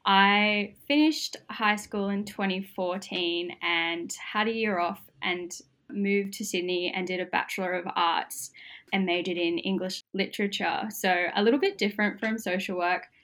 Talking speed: 155 wpm